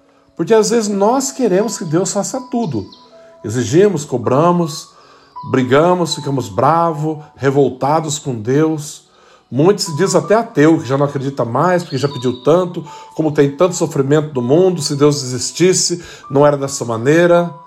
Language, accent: Portuguese, Brazilian